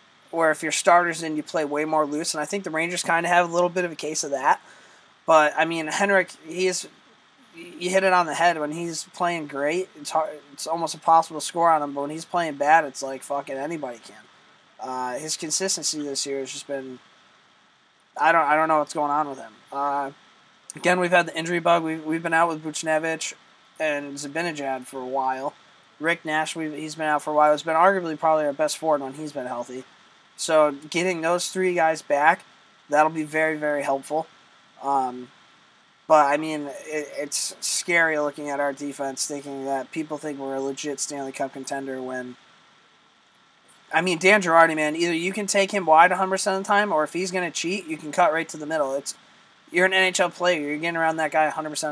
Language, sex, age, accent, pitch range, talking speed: English, male, 20-39, American, 145-170 Hz, 220 wpm